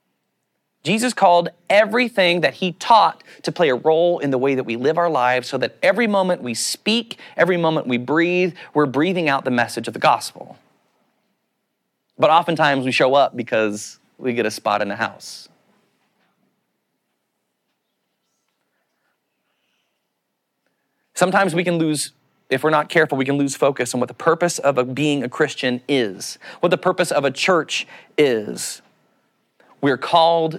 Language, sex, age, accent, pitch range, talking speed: English, male, 30-49, American, 125-180 Hz, 155 wpm